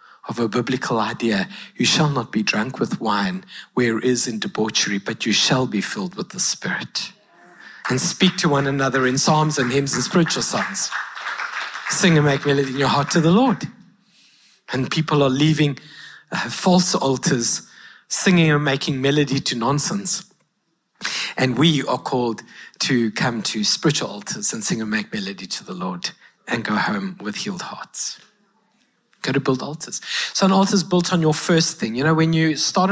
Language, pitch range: English, 140-195 Hz